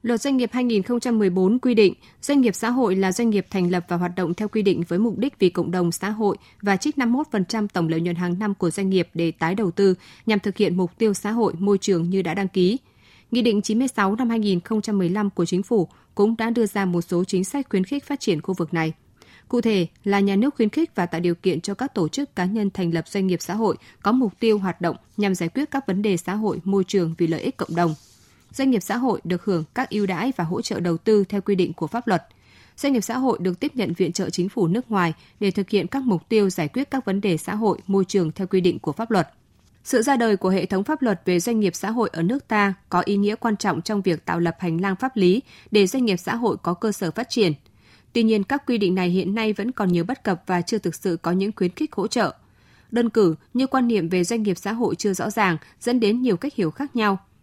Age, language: 20-39, Vietnamese